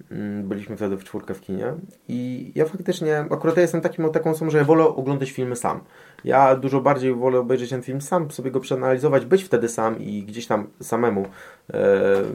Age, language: 20-39, Polish